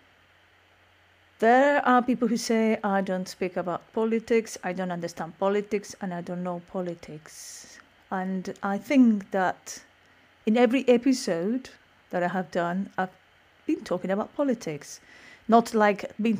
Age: 40-59